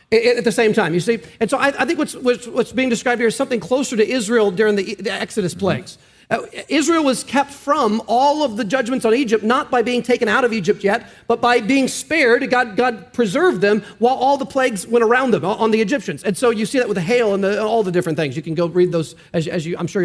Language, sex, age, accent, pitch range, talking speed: English, male, 40-59, American, 215-265 Hz, 265 wpm